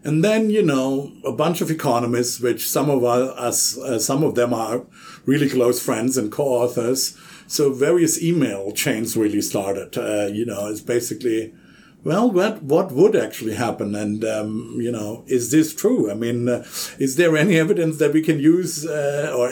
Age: 50-69